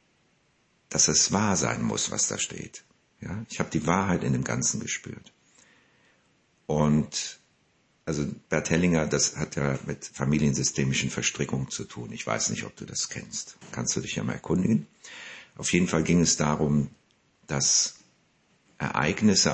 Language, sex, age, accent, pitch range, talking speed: German, male, 50-69, German, 70-85 Hz, 155 wpm